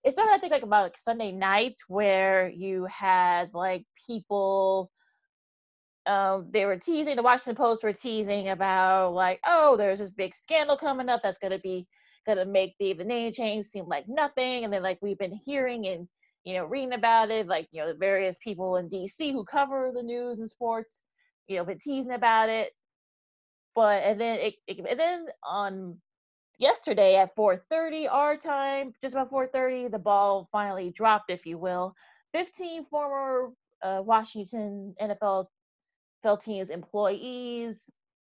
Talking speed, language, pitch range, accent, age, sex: 170 wpm, English, 195-250 Hz, American, 20-39, female